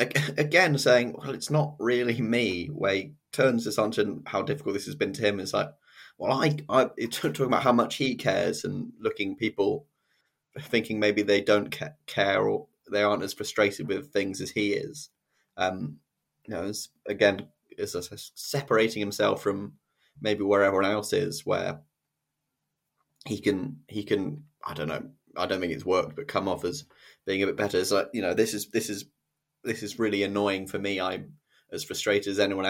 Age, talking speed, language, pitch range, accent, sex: 20-39, 190 wpm, English, 95-115 Hz, British, male